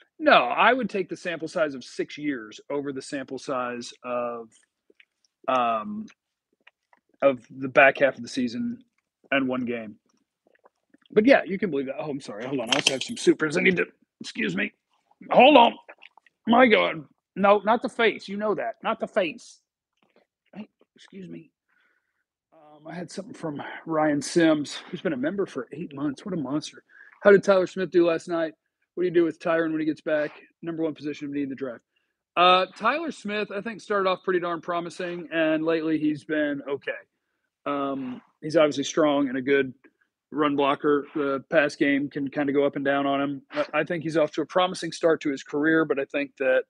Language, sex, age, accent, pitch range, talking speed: English, male, 40-59, American, 140-210 Hz, 200 wpm